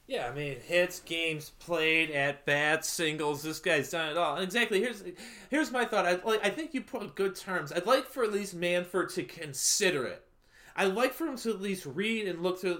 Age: 30-49